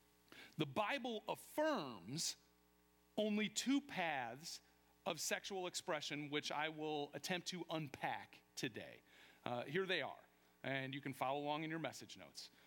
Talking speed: 135 wpm